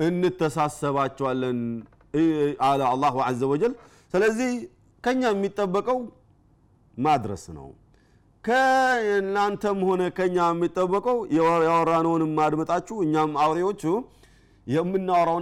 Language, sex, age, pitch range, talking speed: Amharic, male, 40-59, 140-180 Hz, 80 wpm